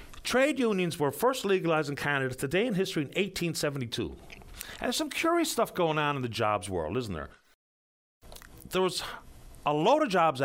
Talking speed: 180 wpm